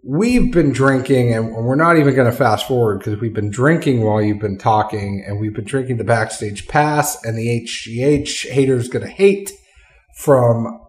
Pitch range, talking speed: 115-150 Hz, 185 wpm